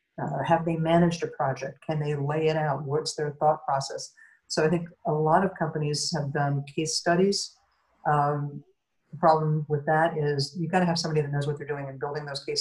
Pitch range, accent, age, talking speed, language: 145-170 Hz, American, 50-69, 220 wpm, English